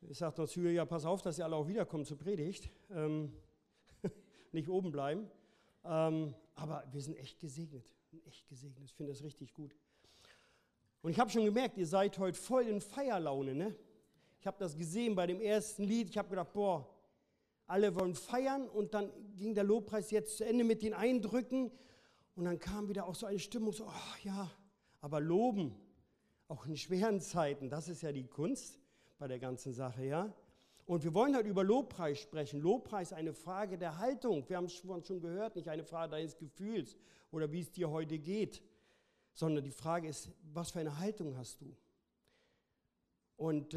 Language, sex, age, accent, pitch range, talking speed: German, male, 50-69, German, 155-205 Hz, 180 wpm